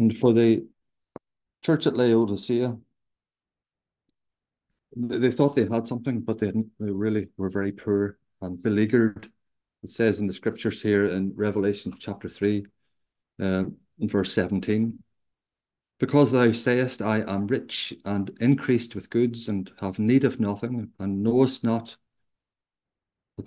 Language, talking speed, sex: English, 135 wpm, male